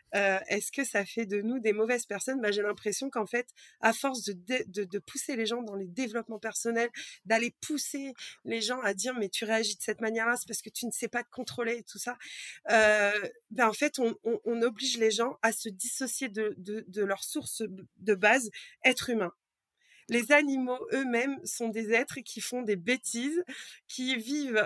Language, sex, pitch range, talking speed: French, female, 215-260 Hz, 210 wpm